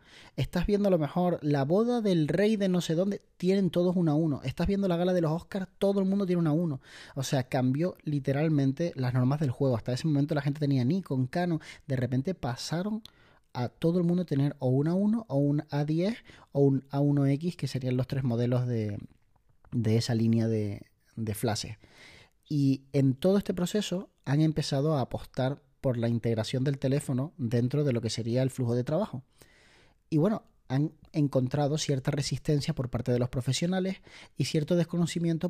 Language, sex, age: Spanish, male, 30-49